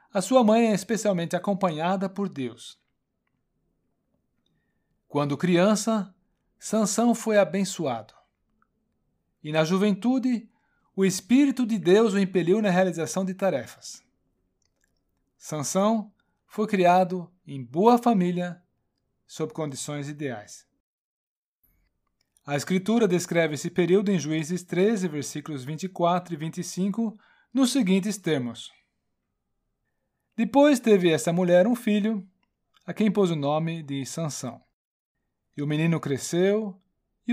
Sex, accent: male, Brazilian